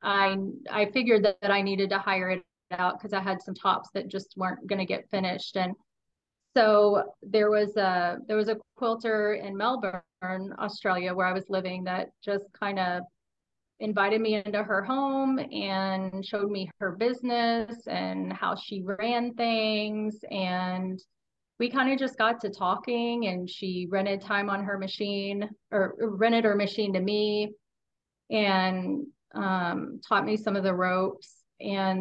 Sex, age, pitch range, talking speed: female, 30-49, 190-215 Hz, 165 wpm